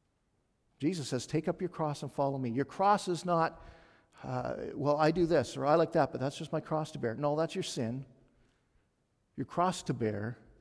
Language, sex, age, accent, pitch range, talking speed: English, male, 50-69, American, 115-150 Hz, 210 wpm